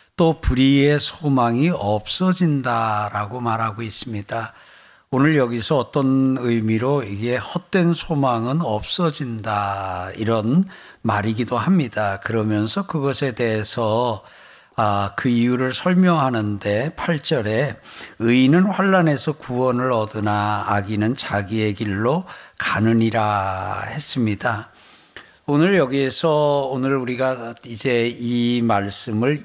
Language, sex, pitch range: Korean, male, 110-145 Hz